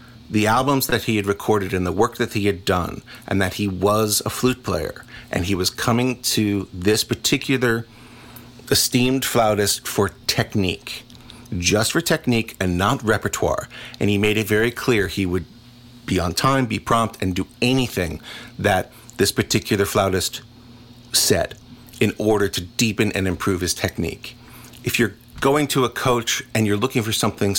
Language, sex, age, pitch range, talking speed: English, male, 50-69, 100-120 Hz, 165 wpm